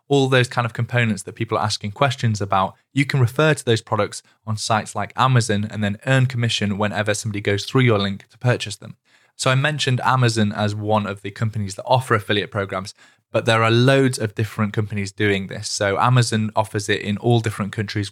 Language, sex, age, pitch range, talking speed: English, male, 20-39, 105-120 Hz, 210 wpm